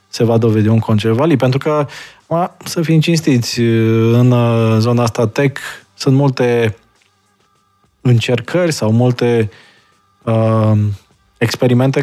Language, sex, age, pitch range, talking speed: Romanian, male, 20-39, 105-120 Hz, 115 wpm